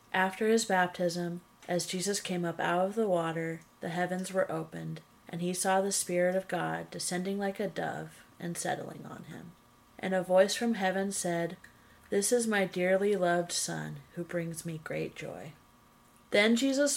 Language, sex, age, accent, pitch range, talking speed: English, female, 30-49, American, 170-200 Hz, 175 wpm